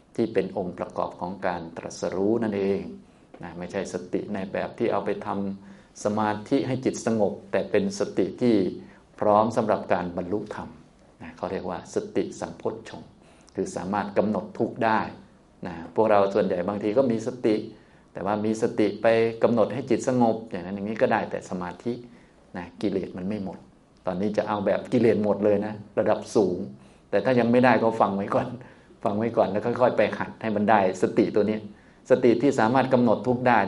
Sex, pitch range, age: male, 100-120 Hz, 20-39